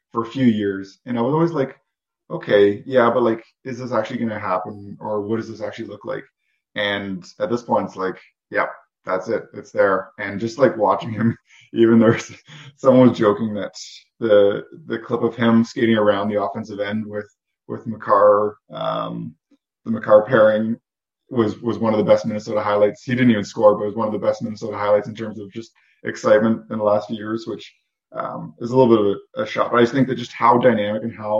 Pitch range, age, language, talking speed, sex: 105-115 Hz, 20-39, English, 220 wpm, male